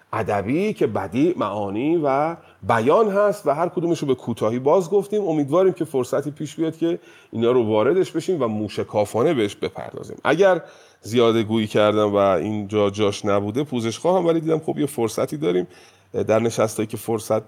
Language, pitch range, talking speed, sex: Persian, 105-155 Hz, 170 wpm, male